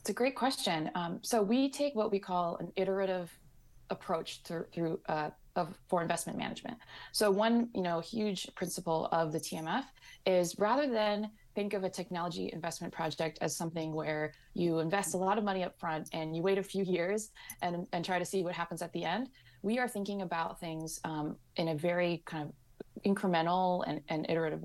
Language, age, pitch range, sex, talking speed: English, 20-39, 165-200 Hz, female, 195 wpm